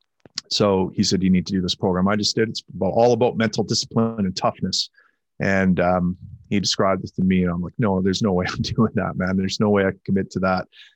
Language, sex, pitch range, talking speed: English, male, 105-125 Hz, 245 wpm